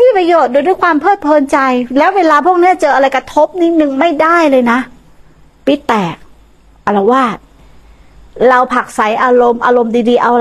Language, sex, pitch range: Thai, female, 250-315 Hz